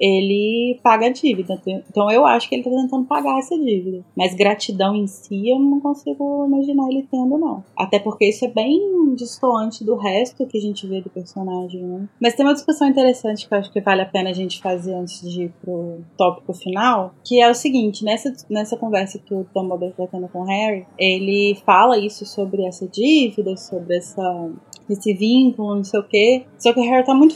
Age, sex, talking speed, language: 20-39, female, 215 wpm, Portuguese